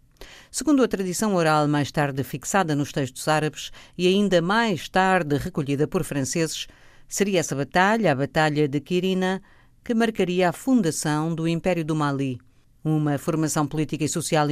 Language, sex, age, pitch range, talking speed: Portuguese, female, 50-69, 145-190 Hz, 155 wpm